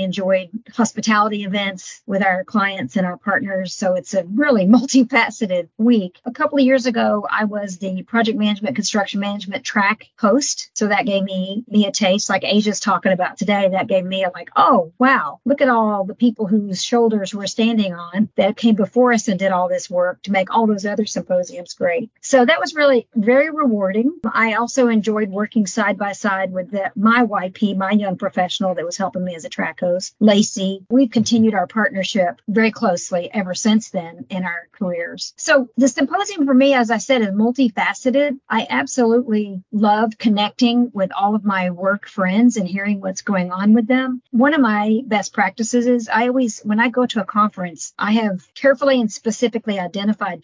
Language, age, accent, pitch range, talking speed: English, 50-69, American, 190-235 Hz, 190 wpm